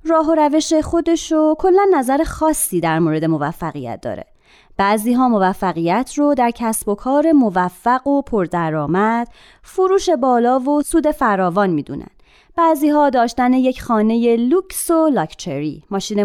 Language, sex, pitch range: Persian, female, 190-280 Hz